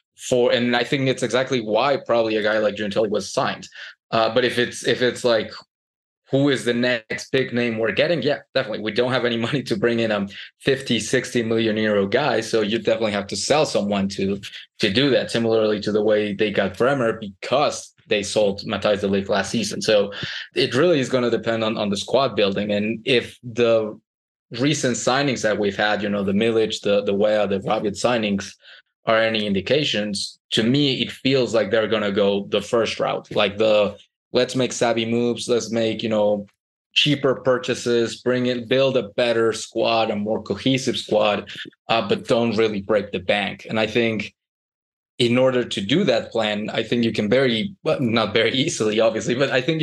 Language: English